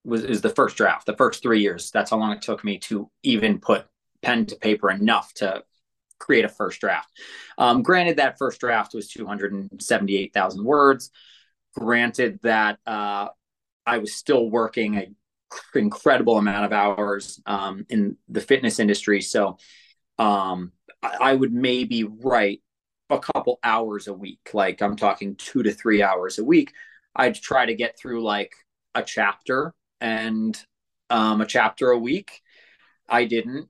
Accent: American